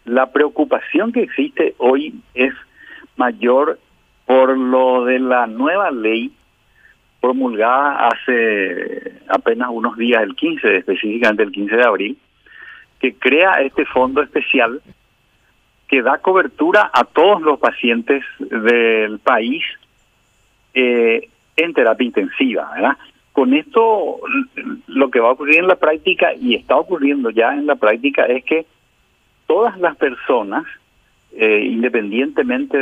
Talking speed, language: 125 wpm, Spanish